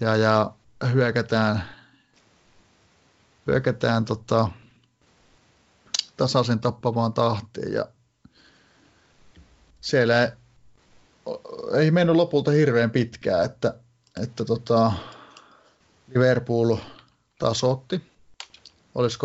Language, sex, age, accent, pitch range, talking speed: Finnish, male, 30-49, native, 110-125 Hz, 70 wpm